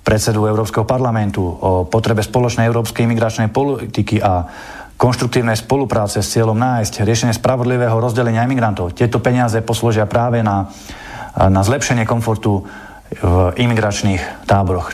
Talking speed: 120 wpm